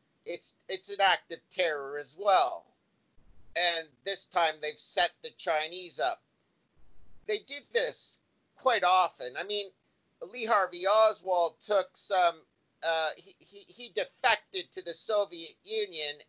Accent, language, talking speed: American, English, 125 wpm